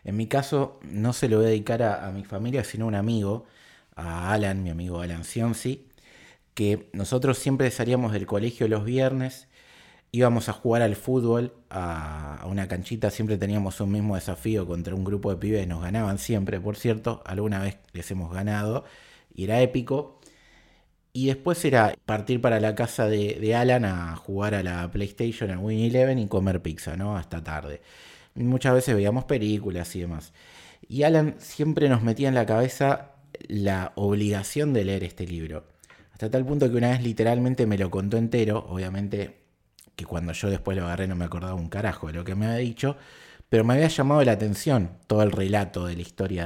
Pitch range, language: 95-125 Hz, Spanish